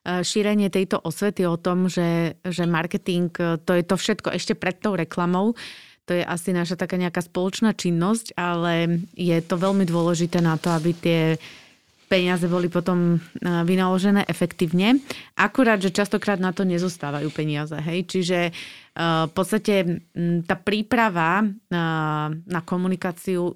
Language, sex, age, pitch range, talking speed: Slovak, female, 30-49, 170-200 Hz, 140 wpm